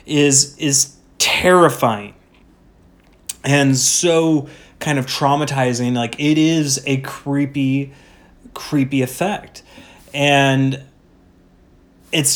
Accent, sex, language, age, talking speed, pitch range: American, male, English, 30-49, 85 wpm, 125-145 Hz